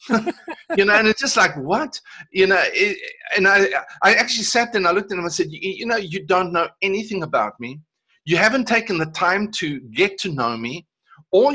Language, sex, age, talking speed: English, male, 50-69, 230 wpm